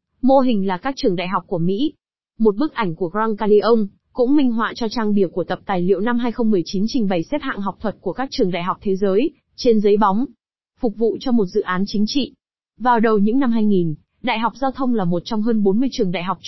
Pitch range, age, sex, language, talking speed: 195-250 Hz, 20-39, female, Vietnamese, 250 wpm